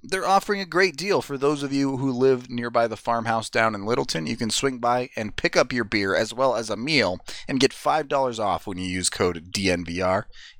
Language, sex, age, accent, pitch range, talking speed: English, male, 30-49, American, 110-145 Hz, 230 wpm